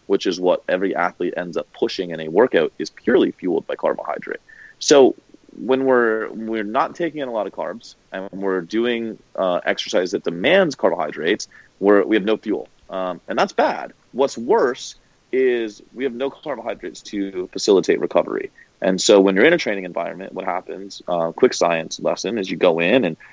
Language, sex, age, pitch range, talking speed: English, male, 30-49, 85-115 Hz, 190 wpm